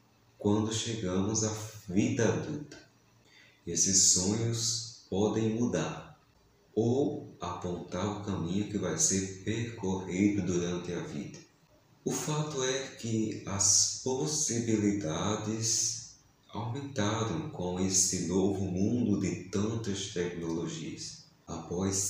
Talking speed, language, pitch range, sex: 95 wpm, Portuguese, 95-115 Hz, male